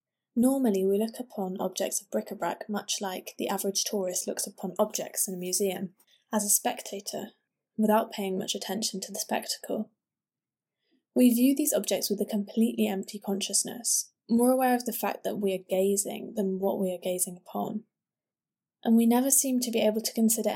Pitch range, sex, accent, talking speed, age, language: 195-225 Hz, female, British, 180 wpm, 10-29, English